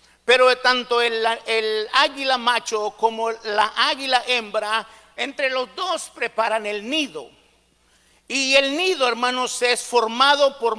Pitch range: 225-275 Hz